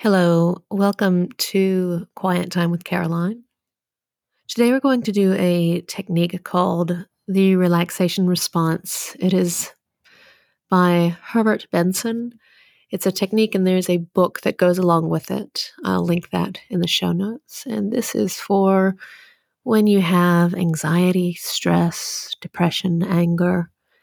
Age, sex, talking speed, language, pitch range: 30-49, female, 130 wpm, English, 170-200 Hz